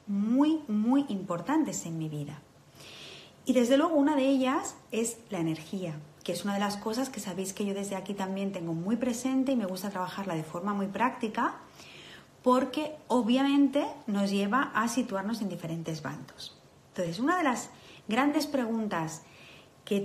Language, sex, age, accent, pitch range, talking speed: Spanish, female, 30-49, Spanish, 190-265 Hz, 165 wpm